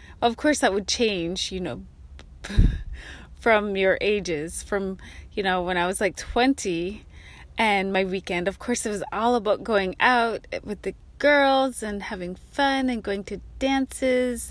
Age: 30-49